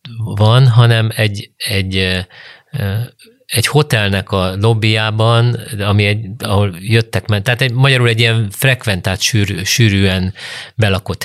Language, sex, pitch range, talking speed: Hungarian, male, 95-115 Hz, 110 wpm